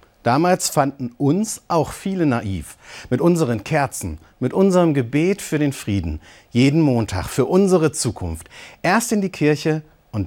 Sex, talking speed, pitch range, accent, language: male, 145 wpm, 110-185 Hz, German, German